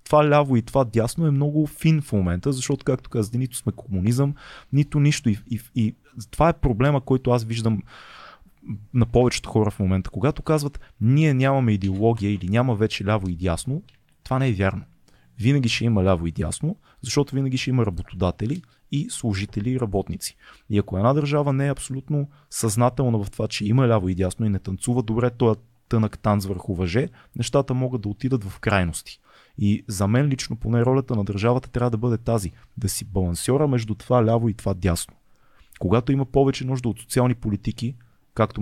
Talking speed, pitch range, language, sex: 190 wpm, 100-130 Hz, Bulgarian, male